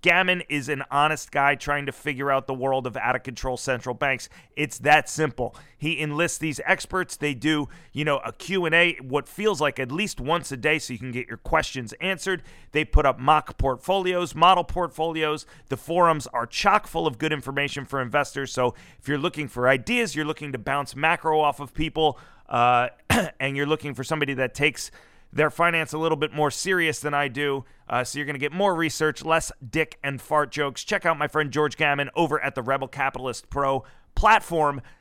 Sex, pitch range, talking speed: male, 135-160 Hz, 200 wpm